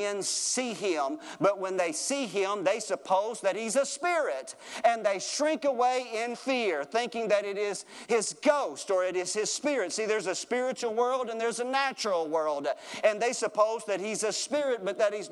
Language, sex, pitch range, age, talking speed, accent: English, male, 185-255 Hz, 40-59, 195 wpm, American